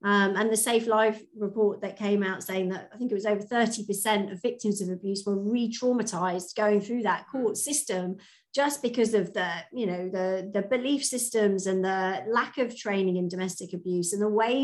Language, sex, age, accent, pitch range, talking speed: English, female, 40-59, British, 195-245 Hz, 205 wpm